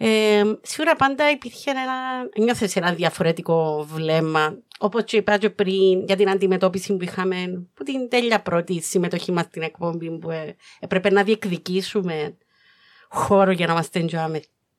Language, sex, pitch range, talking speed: Greek, female, 180-230 Hz, 135 wpm